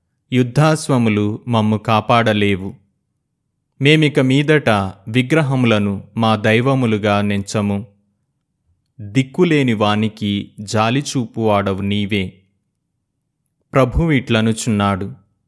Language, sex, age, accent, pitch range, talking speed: Telugu, male, 30-49, native, 105-130 Hz, 55 wpm